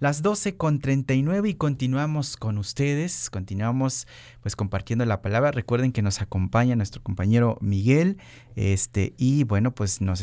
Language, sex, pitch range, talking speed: Spanish, male, 105-130 Hz, 135 wpm